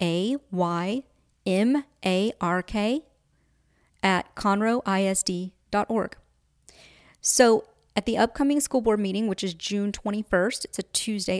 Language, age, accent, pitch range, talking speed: English, 30-49, American, 190-230 Hz, 90 wpm